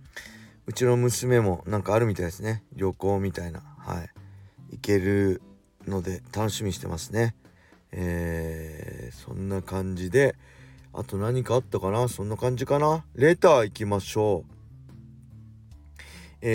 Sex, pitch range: male, 100-140 Hz